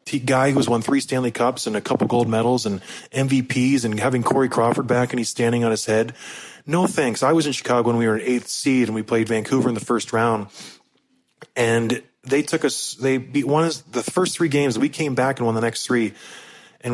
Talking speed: 230 wpm